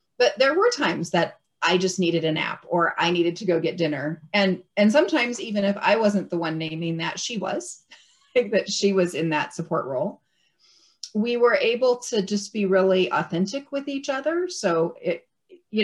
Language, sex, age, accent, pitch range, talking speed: English, female, 30-49, American, 170-220 Hz, 195 wpm